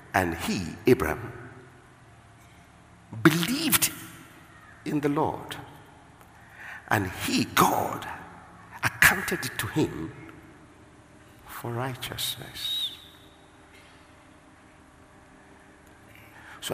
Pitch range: 100-150 Hz